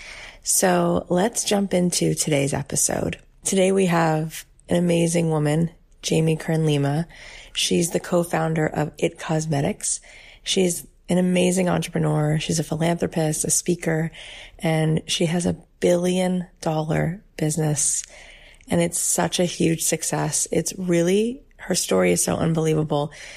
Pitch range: 155-175 Hz